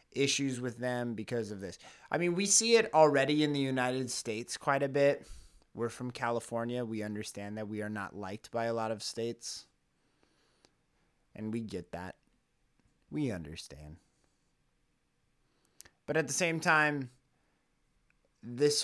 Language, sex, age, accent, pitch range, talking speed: English, male, 30-49, American, 110-145 Hz, 145 wpm